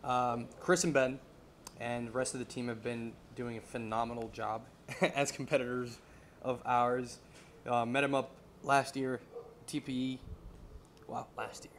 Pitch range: 120-135 Hz